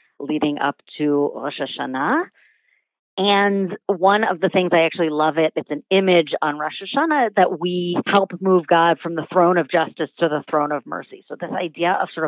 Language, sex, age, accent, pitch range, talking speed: English, female, 40-59, American, 155-185 Hz, 195 wpm